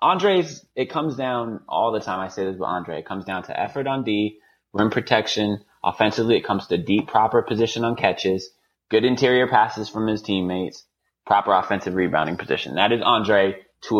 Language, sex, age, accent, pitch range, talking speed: English, male, 20-39, American, 95-115 Hz, 190 wpm